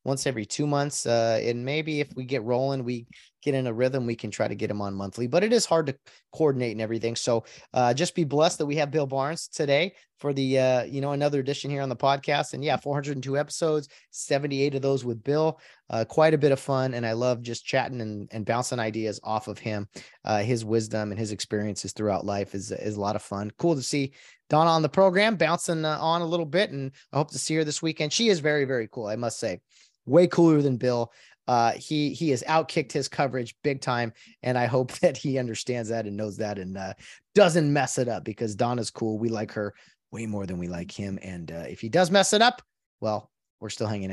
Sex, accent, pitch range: male, American, 110-145 Hz